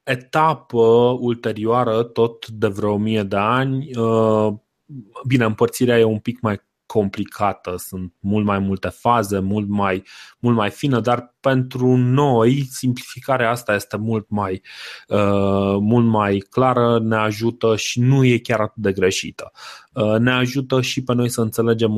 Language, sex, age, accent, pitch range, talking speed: Romanian, male, 20-39, native, 100-125 Hz, 145 wpm